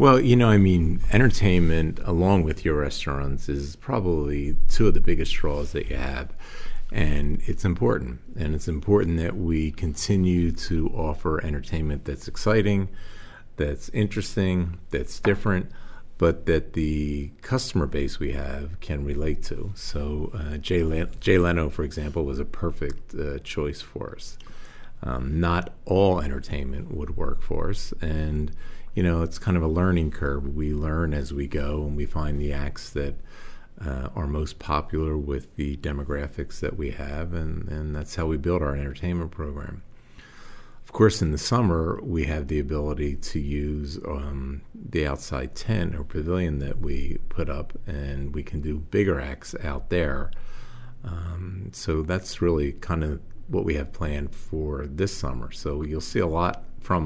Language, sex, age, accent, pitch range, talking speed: English, male, 40-59, American, 75-90 Hz, 165 wpm